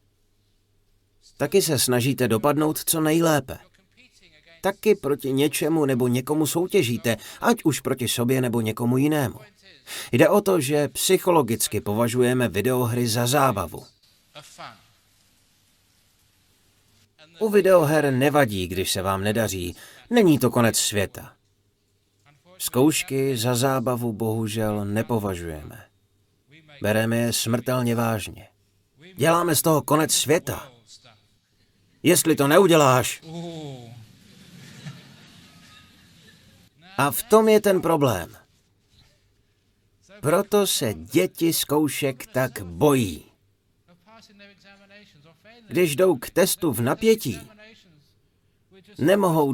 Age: 30-49